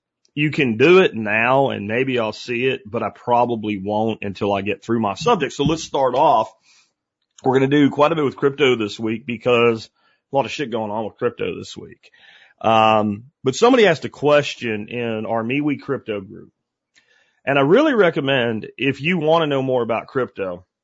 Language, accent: German, American